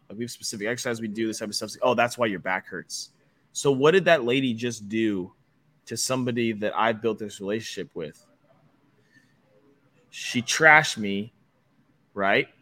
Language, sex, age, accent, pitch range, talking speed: English, male, 20-39, American, 105-130 Hz, 170 wpm